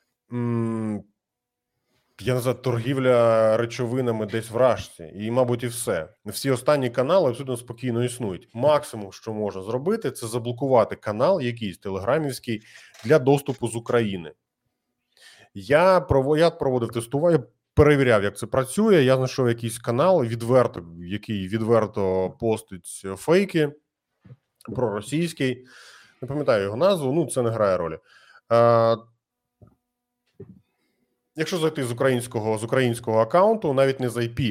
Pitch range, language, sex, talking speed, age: 105-135 Hz, Ukrainian, male, 120 wpm, 30-49